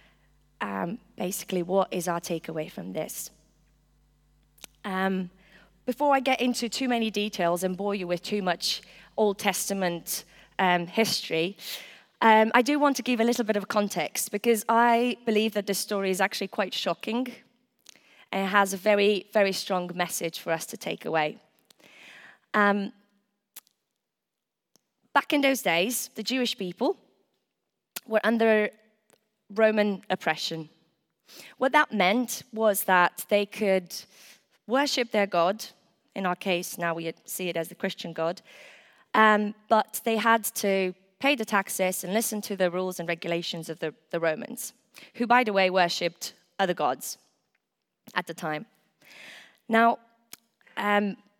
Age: 20-39